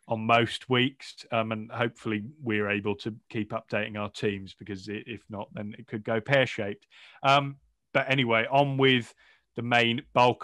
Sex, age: male, 30-49